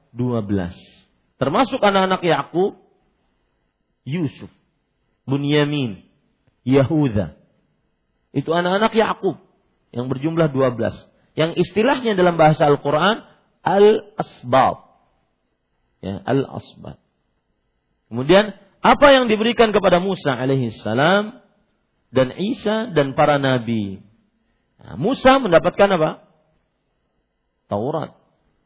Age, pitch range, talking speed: 50-69, 130-195 Hz, 80 wpm